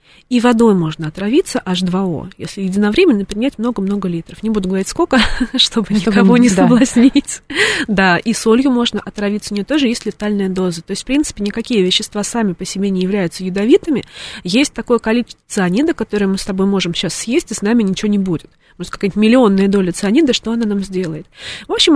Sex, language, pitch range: female, Russian, 190-240 Hz